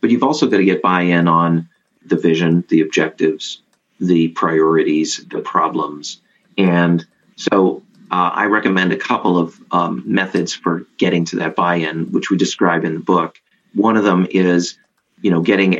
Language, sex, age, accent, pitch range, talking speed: English, male, 30-49, American, 85-95 Hz, 165 wpm